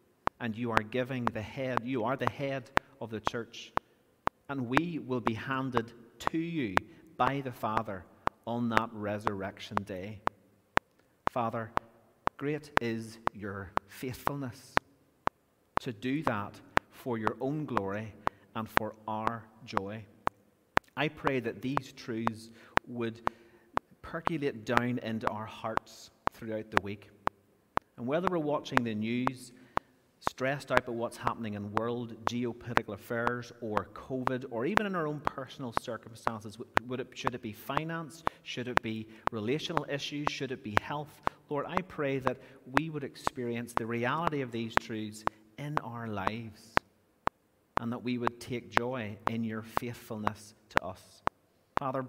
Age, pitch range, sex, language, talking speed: 40-59, 110-135 Hz, male, English, 140 wpm